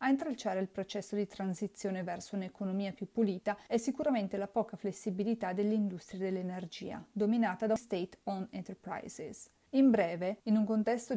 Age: 30-49